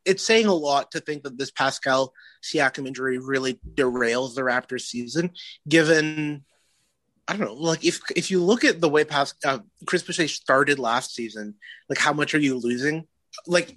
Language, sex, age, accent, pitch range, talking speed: English, male, 30-49, American, 130-170 Hz, 180 wpm